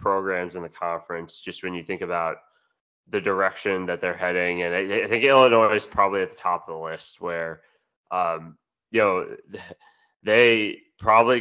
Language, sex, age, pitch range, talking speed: English, male, 20-39, 85-115 Hz, 175 wpm